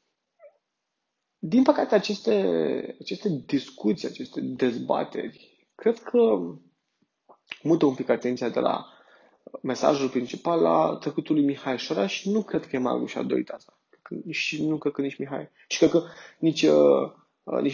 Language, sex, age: Romanian, male, 20-39